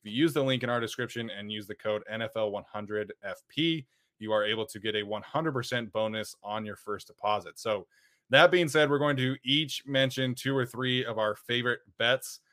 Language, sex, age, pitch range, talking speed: English, male, 20-39, 110-130 Hz, 195 wpm